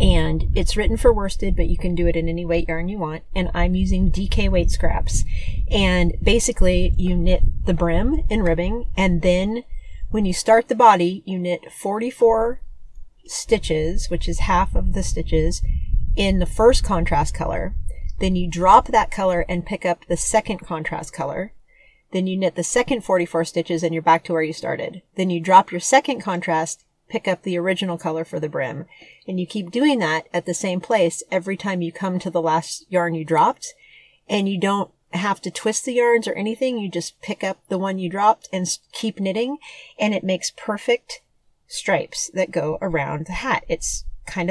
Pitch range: 170-210 Hz